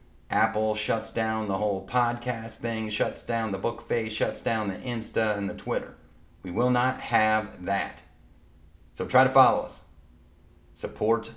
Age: 40-59